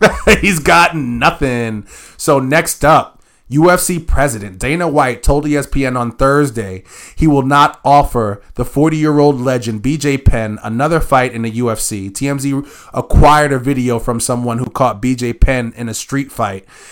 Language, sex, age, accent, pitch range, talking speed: English, male, 20-39, American, 125-155 Hz, 155 wpm